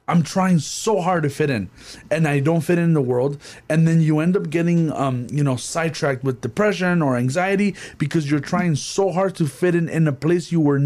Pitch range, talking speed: 135-170 Hz, 225 wpm